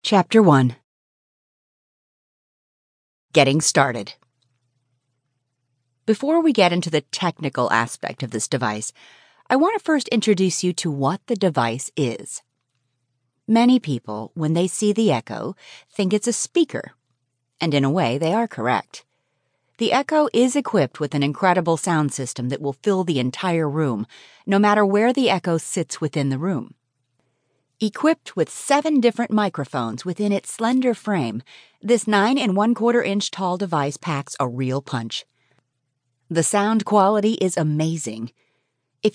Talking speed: 145 wpm